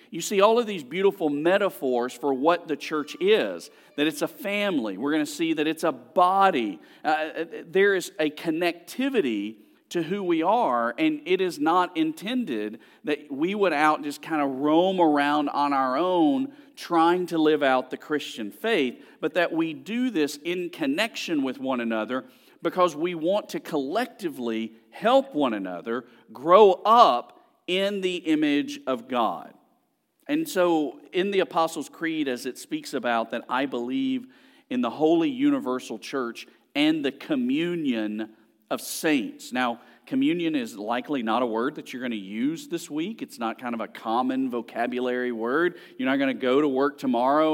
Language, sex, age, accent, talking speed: English, male, 50-69, American, 170 wpm